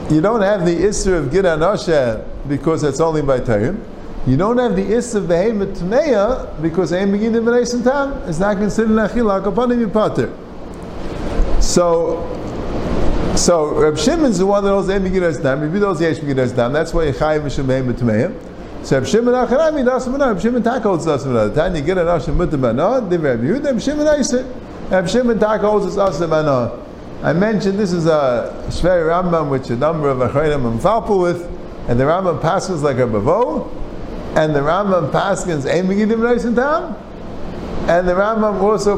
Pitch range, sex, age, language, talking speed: 155-215 Hz, male, 50-69, English, 145 wpm